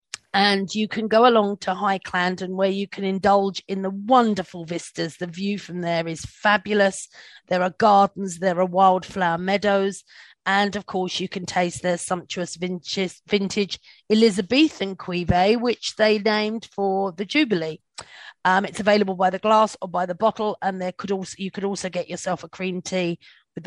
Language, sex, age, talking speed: English, female, 40-59, 175 wpm